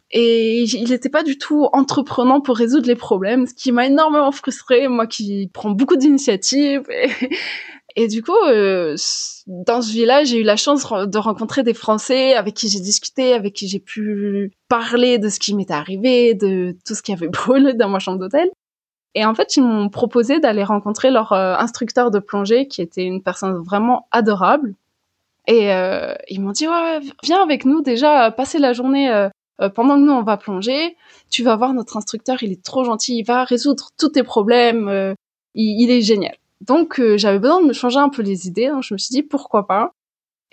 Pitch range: 205-265 Hz